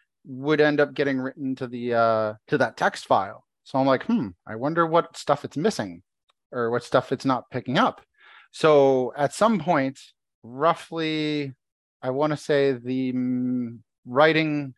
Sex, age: male, 30-49